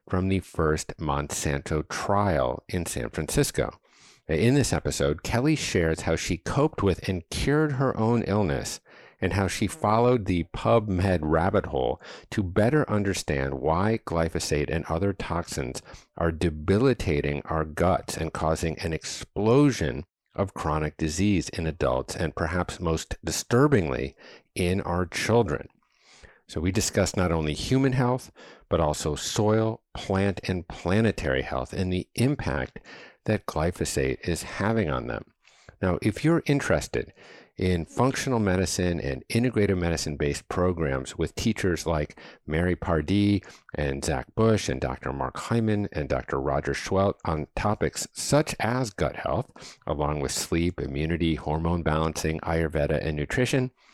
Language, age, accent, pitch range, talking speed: English, 50-69, American, 80-105 Hz, 135 wpm